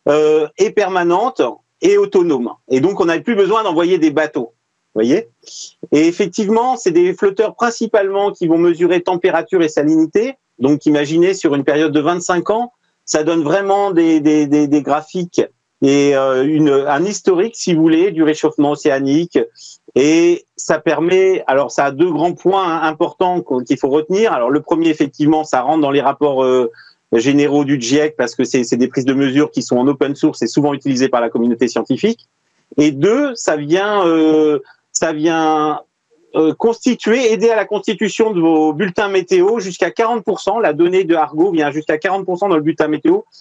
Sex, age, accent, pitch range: male, 40-59, French, 150-225 Hz